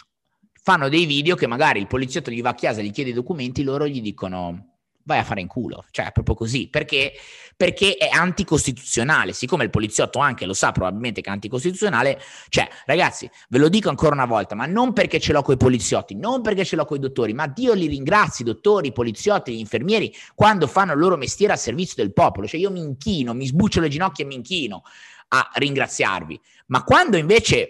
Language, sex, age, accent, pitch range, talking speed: Italian, male, 30-49, native, 120-180 Hz, 210 wpm